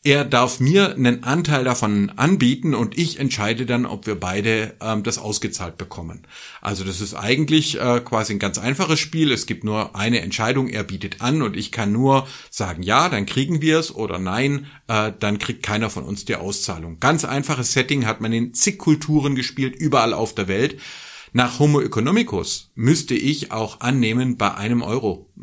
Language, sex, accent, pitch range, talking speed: German, male, German, 110-145 Hz, 185 wpm